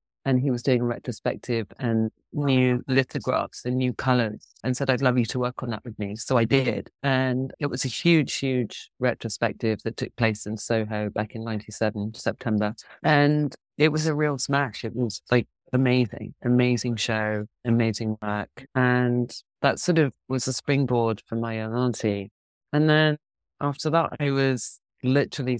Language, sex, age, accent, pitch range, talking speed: English, male, 30-49, British, 110-135 Hz, 170 wpm